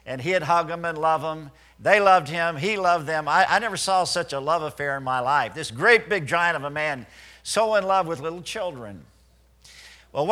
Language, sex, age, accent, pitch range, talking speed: English, male, 50-69, American, 135-185 Hz, 220 wpm